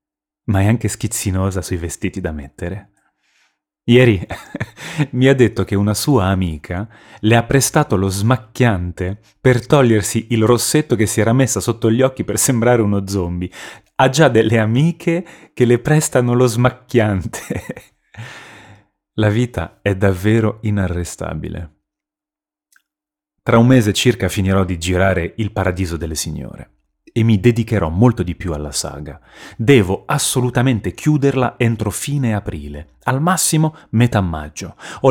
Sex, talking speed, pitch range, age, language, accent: male, 135 wpm, 95-130 Hz, 30-49, Italian, native